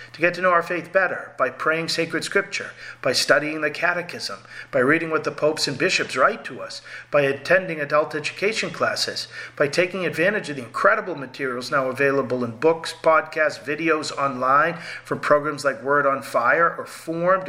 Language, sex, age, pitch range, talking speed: English, male, 40-59, 135-165 Hz, 180 wpm